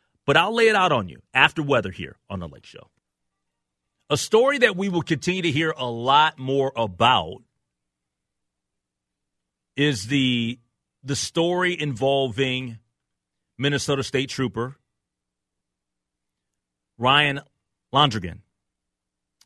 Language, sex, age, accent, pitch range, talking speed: English, male, 30-49, American, 90-135 Hz, 110 wpm